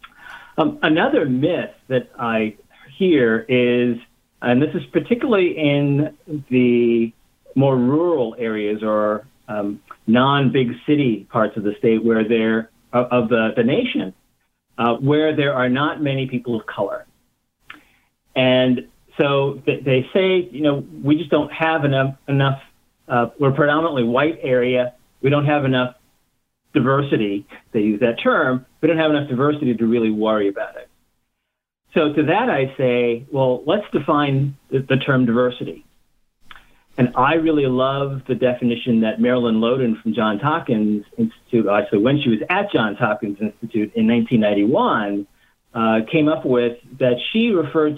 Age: 50-69